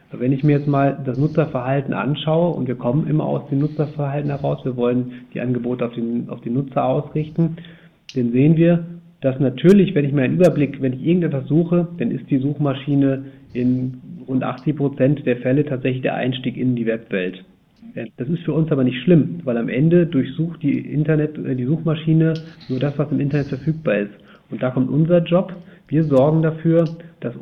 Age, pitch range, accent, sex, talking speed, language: 40-59, 125-160 Hz, German, male, 190 wpm, German